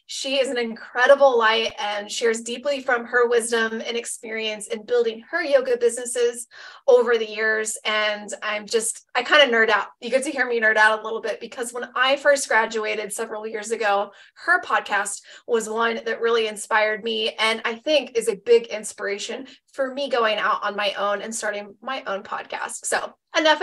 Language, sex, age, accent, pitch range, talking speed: English, female, 20-39, American, 215-260 Hz, 195 wpm